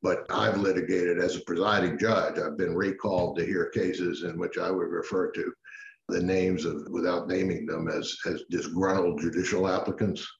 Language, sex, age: English, male, 60-79